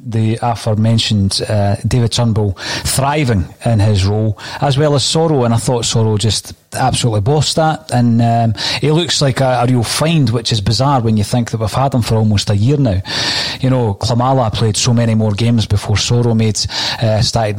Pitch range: 115-135 Hz